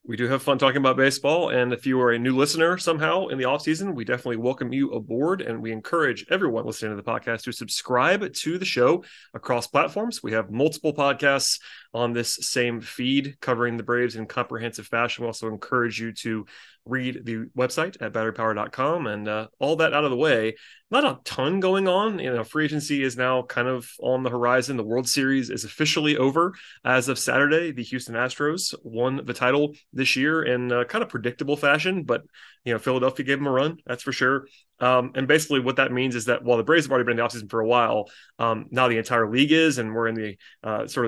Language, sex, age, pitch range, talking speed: English, male, 30-49, 120-145 Hz, 220 wpm